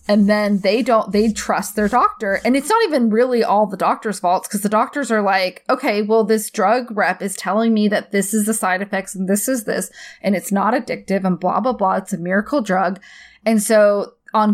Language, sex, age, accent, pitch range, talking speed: English, female, 20-39, American, 195-240 Hz, 225 wpm